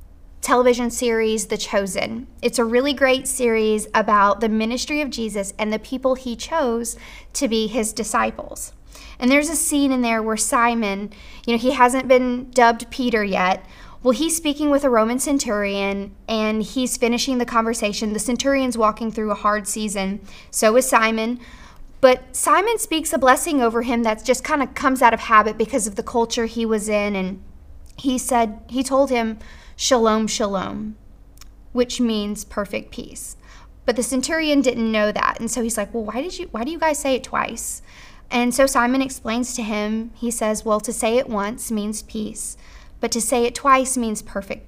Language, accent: English, American